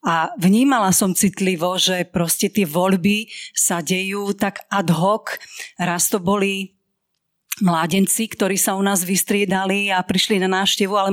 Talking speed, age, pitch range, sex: 145 wpm, 40-59, 195-245 Hz, female